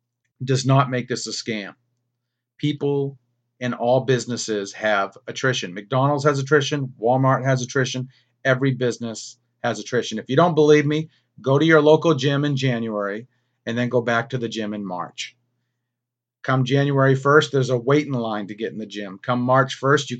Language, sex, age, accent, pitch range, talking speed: English, male, 40-59, American, 115-135 Hz, 175 wpm